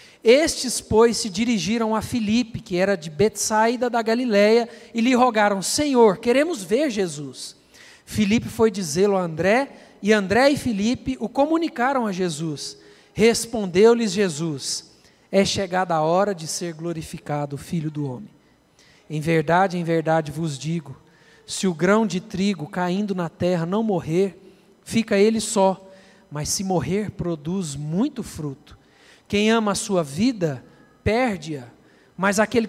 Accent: Brazilian